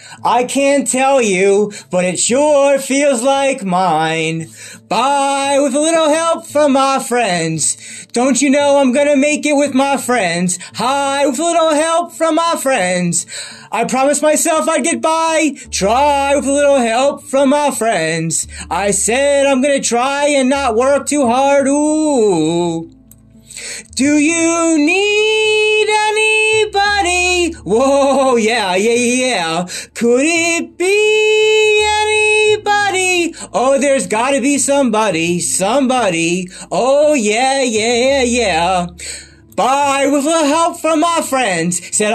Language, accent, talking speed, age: English, American, 140 wpm, 30-49